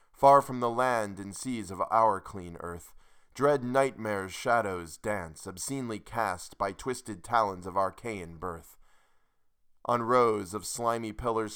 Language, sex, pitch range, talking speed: English, male, 90-115 Hz, 140 wpm